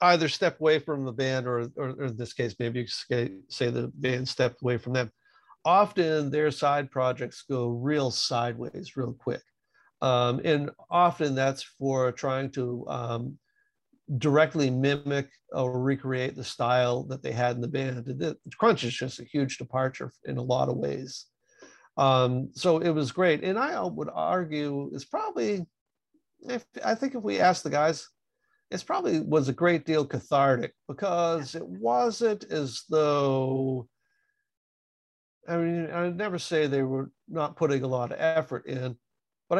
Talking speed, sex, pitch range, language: 160 wpm, male, 130-155 Hz, English